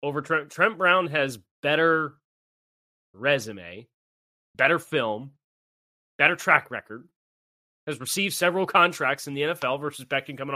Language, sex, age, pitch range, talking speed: English, male, 30-49, 120-160 Hz, 125 wpm